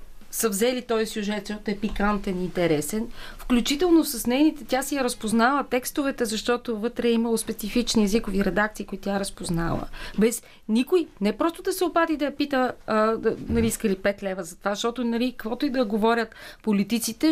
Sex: female